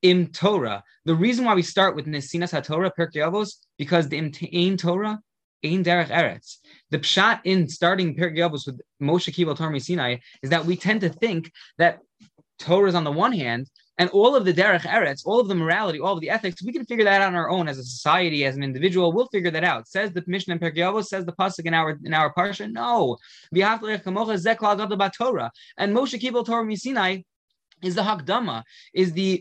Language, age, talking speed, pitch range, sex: English, 20-39, 200 wpm, 155-195 Hz, male